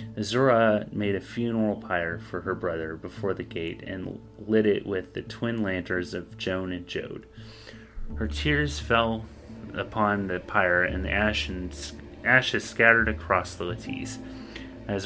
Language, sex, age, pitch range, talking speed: English, male, 30-49, 90-115 Hz, 145 wpm